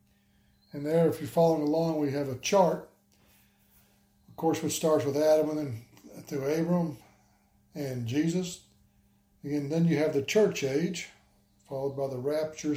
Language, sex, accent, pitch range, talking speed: English, male, American, 115-170 Hz, 155 wpm